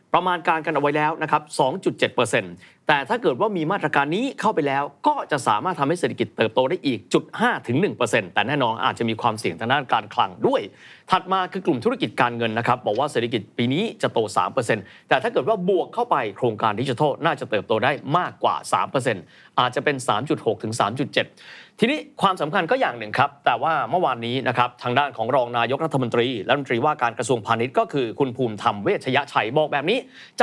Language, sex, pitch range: Thai, male, 120-185 Hz